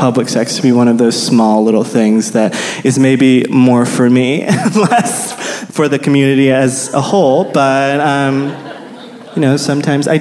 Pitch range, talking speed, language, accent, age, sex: 125-160 Hz, 170 wpm, English, American, 20-39, male